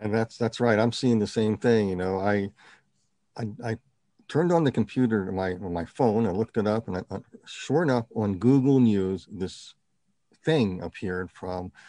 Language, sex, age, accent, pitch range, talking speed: English, male, 50-69, American, 105-120 Hz, 190 wpm